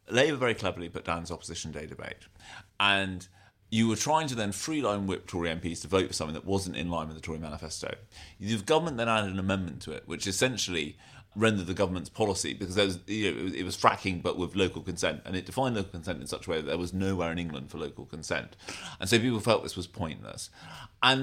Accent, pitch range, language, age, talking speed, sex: British, 90-110 Hz, English, 30-49, 225 wpm, male